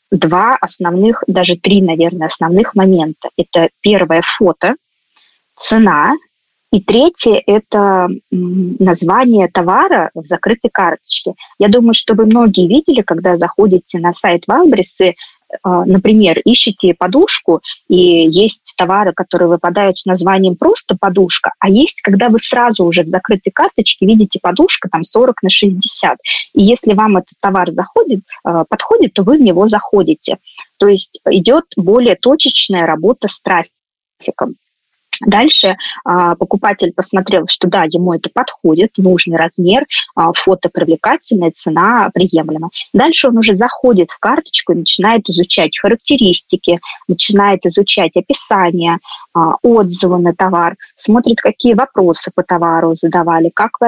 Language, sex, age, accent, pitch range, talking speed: Russian, female, 20-39, native, 175-225 Hz, 130 wpm